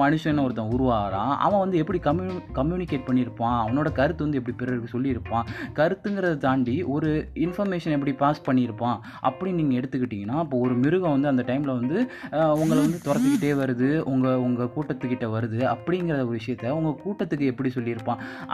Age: 20-39